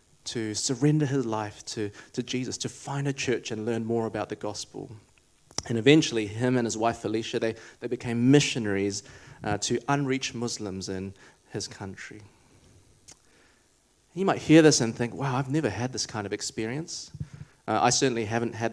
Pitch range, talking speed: 115-155 Hz, 175 wpm